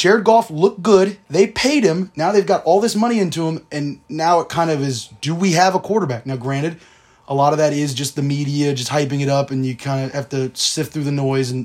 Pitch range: 135-170 Hz